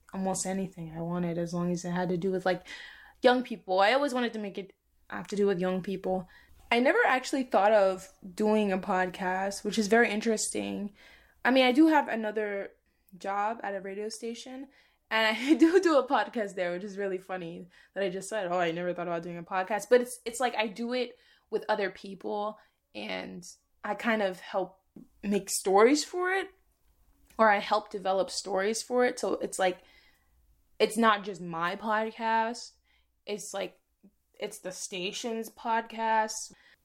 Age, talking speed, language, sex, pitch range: 20-39, 185 wpm, English, female, 185-235 Hz